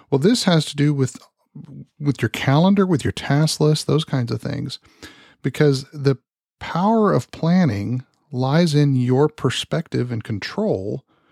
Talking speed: 150 wpm